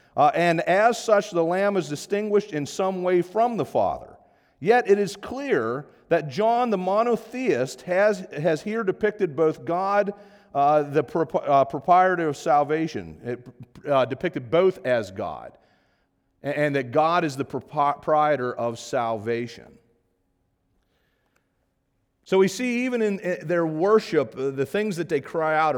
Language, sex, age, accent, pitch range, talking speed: English, male, 40-59, American, 130-185 Hz, 140 wpm